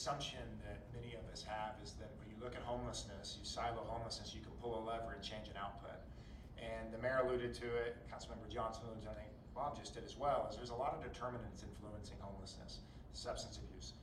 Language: English